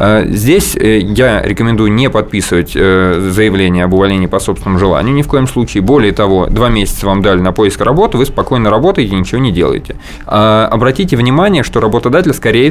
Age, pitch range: 20-39, 95-120 Hz